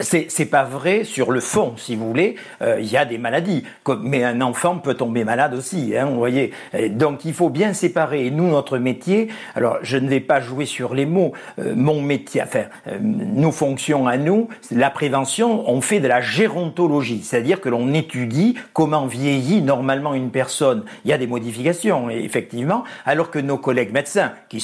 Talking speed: 200 wpm